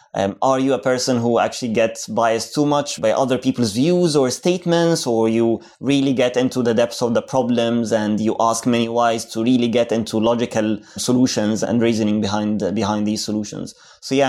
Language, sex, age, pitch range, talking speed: English, male, 20-39, 115-135 Hz, 195 wpm